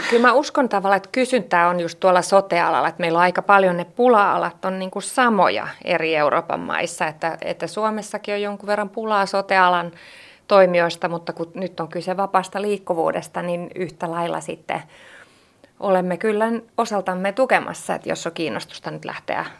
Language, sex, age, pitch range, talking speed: Finnish, female, 30-49, 180-210 Hz, 160 wpm